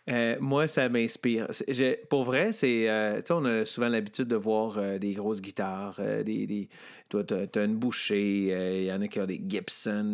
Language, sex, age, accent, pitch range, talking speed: French, male, 40-59, Canadian, 105-130 Hz, 220 wpm